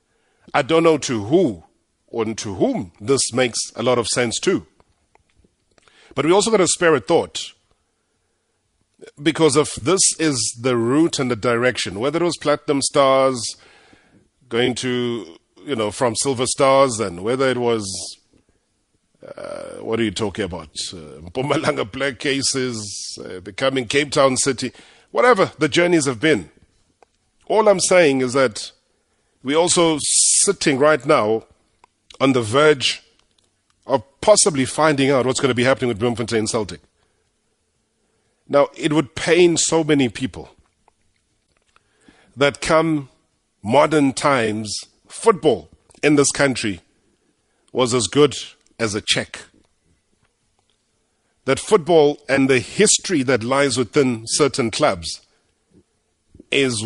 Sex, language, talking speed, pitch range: male, English, 135 wpm, 115-145 Hz